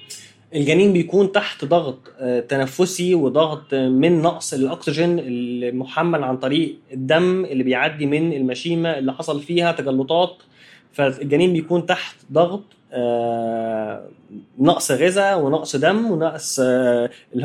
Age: 20-39